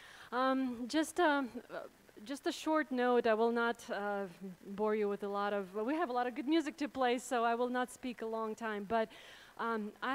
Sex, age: female, 30-49